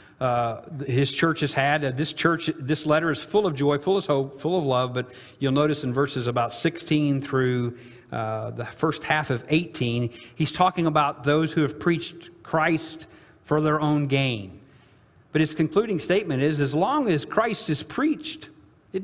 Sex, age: male, 50-69